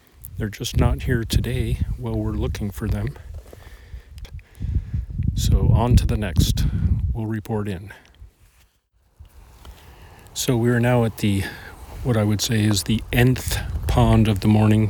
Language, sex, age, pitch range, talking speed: English, male, 40-59, 90-115 Hz, 145 wpm